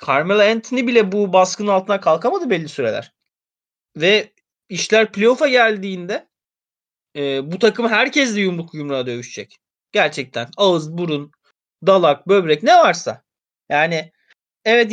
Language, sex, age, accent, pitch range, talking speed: Turkish, male, 30-49, native, 150-205 Hz, 120 wpm